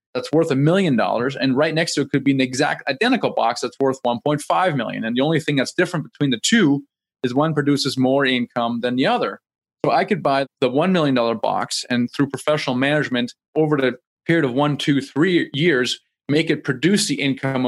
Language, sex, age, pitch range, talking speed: English, male, 30-49, 125-150 Hz, 210 wpm